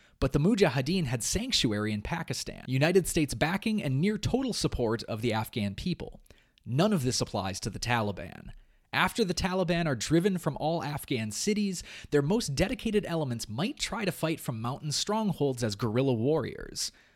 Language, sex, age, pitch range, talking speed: English, male, 30-49, 120-185 Hz, 165 wpm